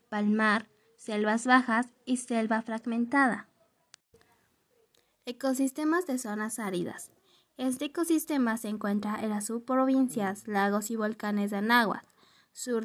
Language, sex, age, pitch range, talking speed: English, female, 20-39, 215-255 Hz, 105 wpm